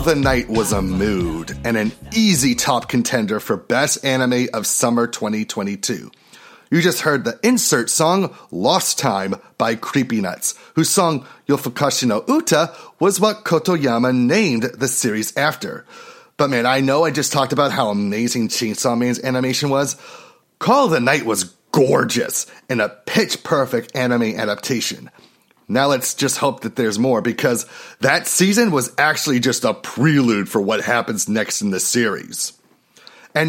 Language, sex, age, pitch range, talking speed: English, male, 30-49, 120-185 Hz, 155 wpm